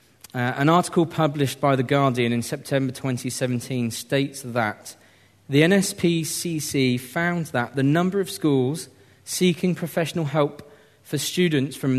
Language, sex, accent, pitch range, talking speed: English, male, British, 120-150 Hz, 130 wpm